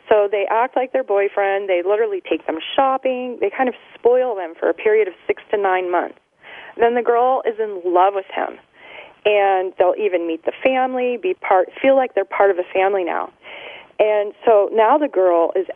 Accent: American